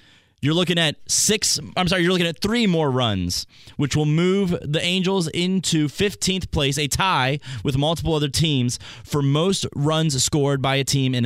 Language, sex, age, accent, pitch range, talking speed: English, male, 20-39, American, 135-175 Hz, 180 wpm